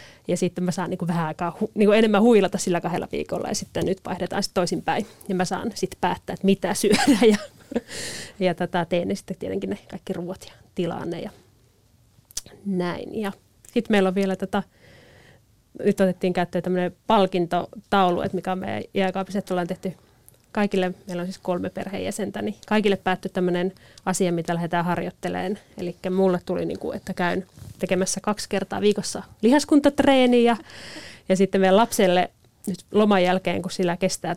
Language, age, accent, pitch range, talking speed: Finnish, 30-49, native, 175-200 Hz, 175 wpm